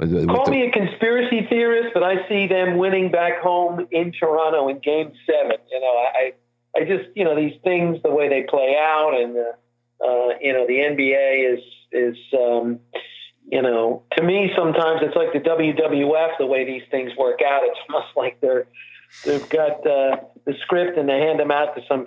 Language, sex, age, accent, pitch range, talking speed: English, male, 50-69, American, 130-165 Hz, 195 wpm